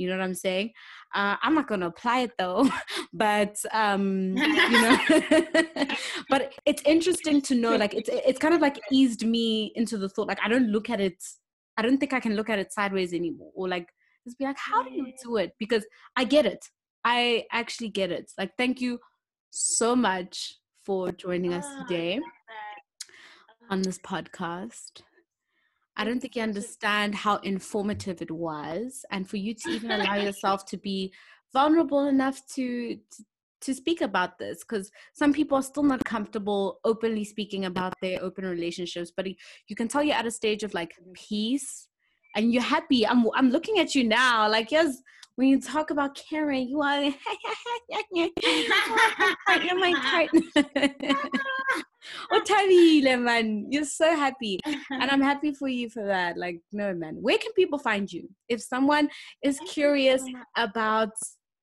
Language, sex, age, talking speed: English, female, 20-39, 165 wpm